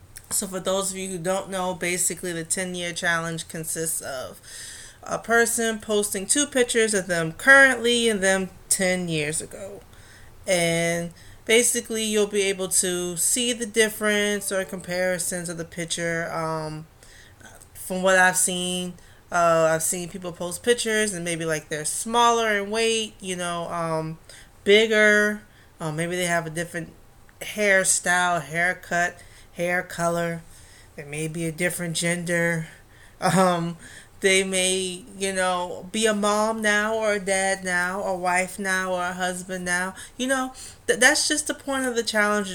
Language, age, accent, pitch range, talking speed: English, 30-49, American, 165-200 Hz, 155 wpm